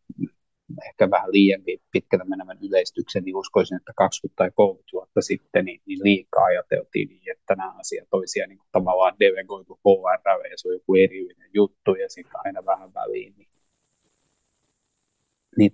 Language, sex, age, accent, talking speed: Finnish, male, 30-49, native, 150 wpm